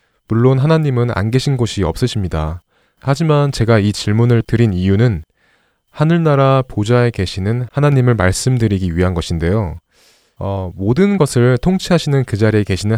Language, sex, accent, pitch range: Korean, male, native, 95-140 Hz